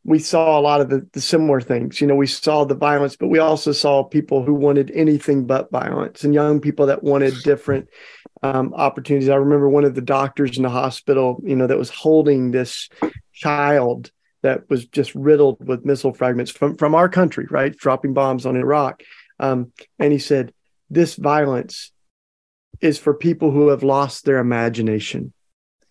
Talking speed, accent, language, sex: 185 wpm, American, English, male